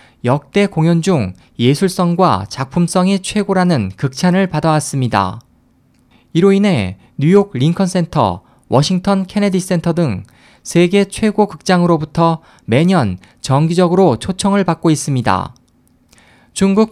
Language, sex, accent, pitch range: Korean, male, native, 135-185 Hz